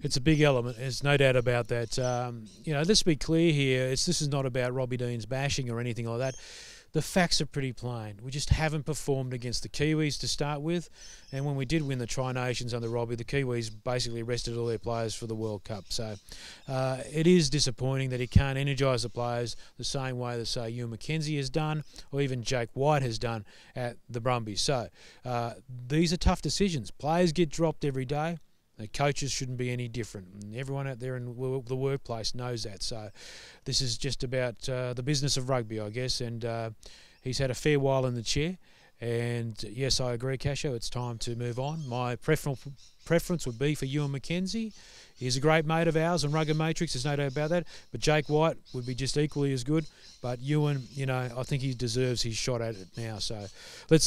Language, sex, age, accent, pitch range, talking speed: English, male, 30-49, Australian, 120-145 Hz, 215 wpm